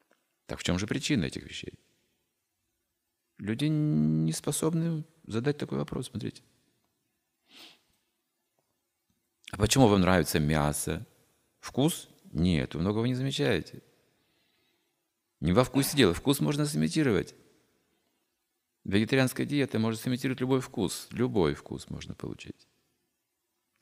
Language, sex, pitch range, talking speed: Russian, male, 85-135 Hz, 105 wpm